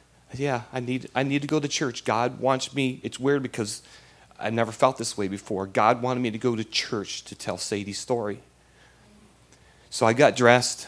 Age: 40-59